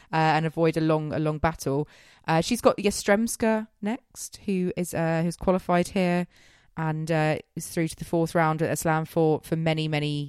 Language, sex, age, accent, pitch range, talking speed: English, female, 20-39, British, 140-180 Hz, 200 wpm